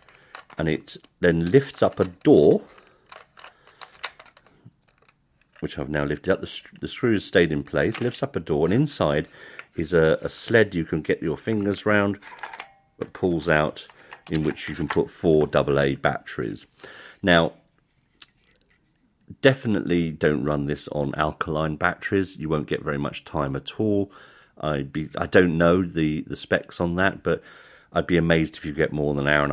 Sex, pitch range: male, 75-100 Hz